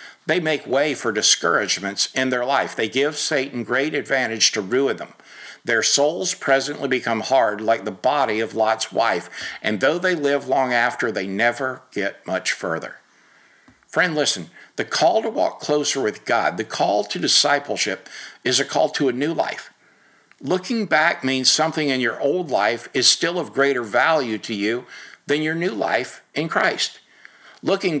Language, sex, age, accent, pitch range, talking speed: English, male, 50-69, American, 110-145 Hz, 170 wpm